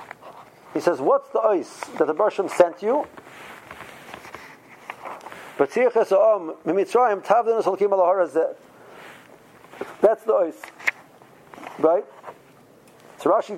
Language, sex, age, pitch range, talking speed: English, male, 50-69, 195-260 Hz, 70 wpm